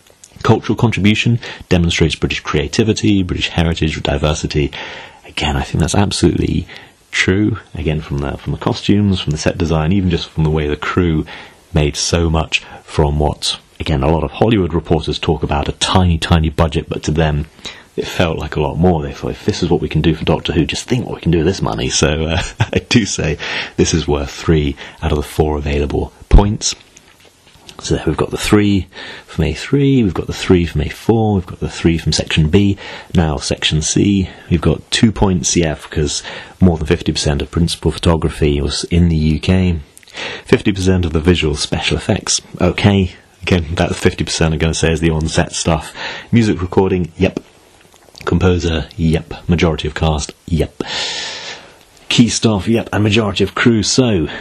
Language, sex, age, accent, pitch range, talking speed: English, male, 30-49, British, 80-95 Hz, 185 wpm